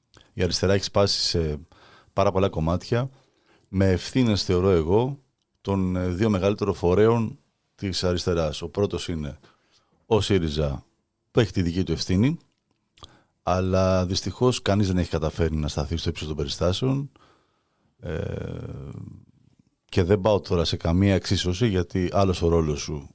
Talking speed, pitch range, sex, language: 140 wpm, 85-105 Hz, male, Greek